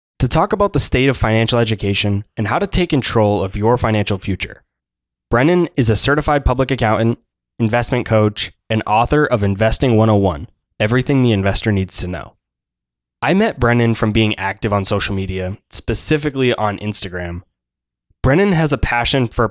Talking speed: 165 wpm